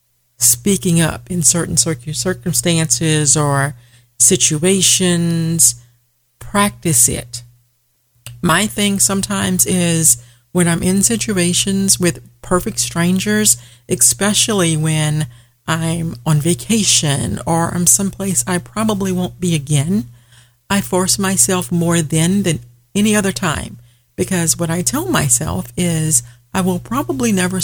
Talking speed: 115 wpm